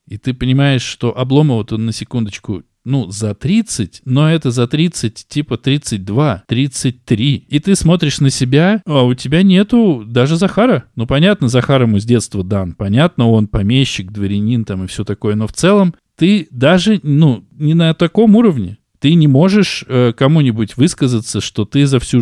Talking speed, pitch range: 175 wpm, 110-155 Hz